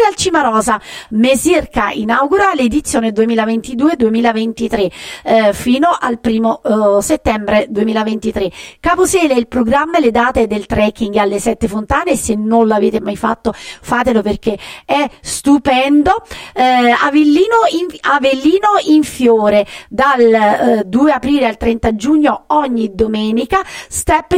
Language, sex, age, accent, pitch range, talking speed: Italian, female, 40-59, native, 220-285 Hz, 120 wpm